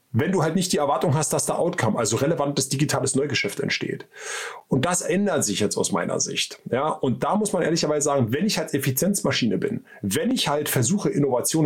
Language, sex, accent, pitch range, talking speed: German, male, German, 130-190 Hz, 205 wpm